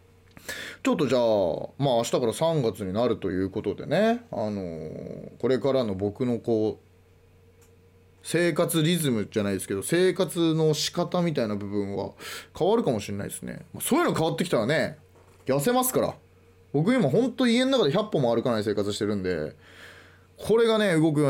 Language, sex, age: Japanese, male, 20-39